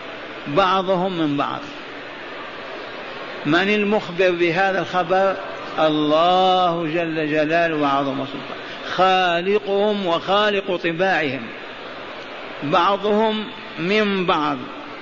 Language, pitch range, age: Arabic, 180-205 Hz, 50-69